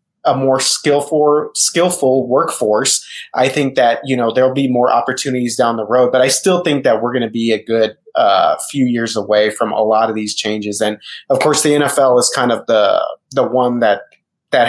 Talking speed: 210 wpm